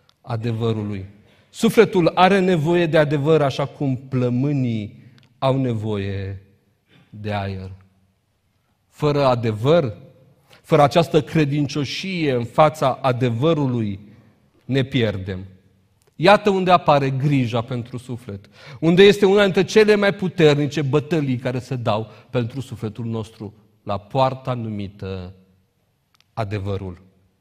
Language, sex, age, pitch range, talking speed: Romanian, male, 40-59, 100-130 Hz, 105 wpm